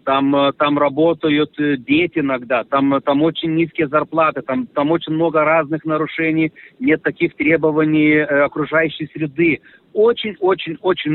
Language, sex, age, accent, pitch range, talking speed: Russian, male, 40-59, native, 140-185 Hz, 120 wpm